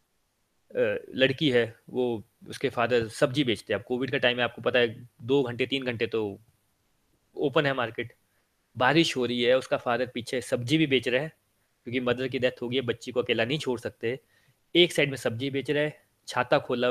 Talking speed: 210 wpm